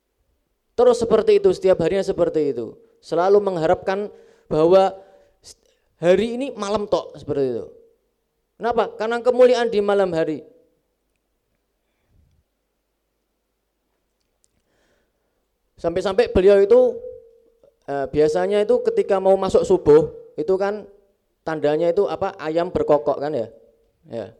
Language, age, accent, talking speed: Indonesian, 20-39, native, 105 wpm